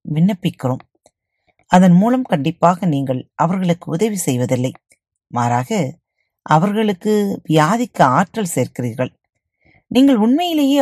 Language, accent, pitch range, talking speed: Tamil, native, 130-190 Hz, 80 wpm